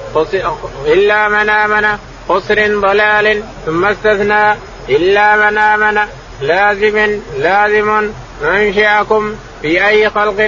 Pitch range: 210-215 Hz